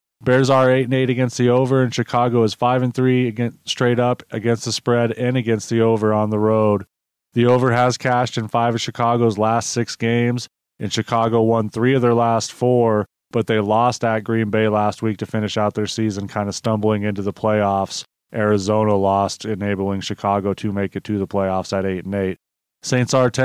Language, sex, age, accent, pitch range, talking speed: English, male, 30-49, American, 105-120 Hz, 190 wpm